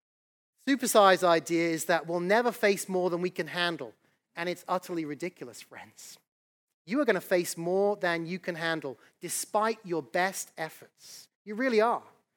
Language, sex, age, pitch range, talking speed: English, male, 30-49, 170-220 Hz, 165 wpm